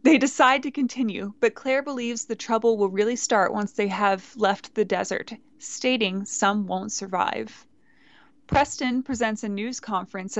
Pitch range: 205-255 Hz